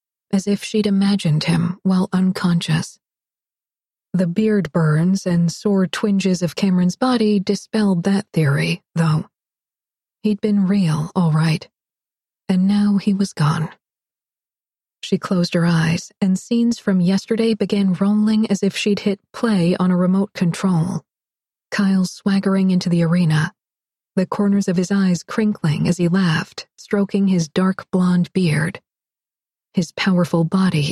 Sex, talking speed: female, 140 wpm